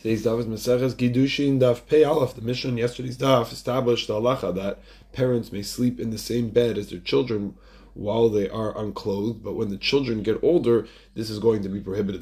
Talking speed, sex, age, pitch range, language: 195 wpm, male, 20-39, 105-120 Hz, English